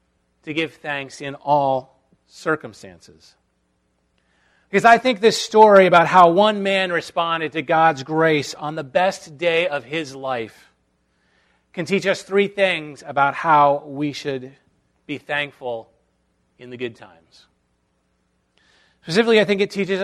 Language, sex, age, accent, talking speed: English, male, 40-59, American, 140 wpm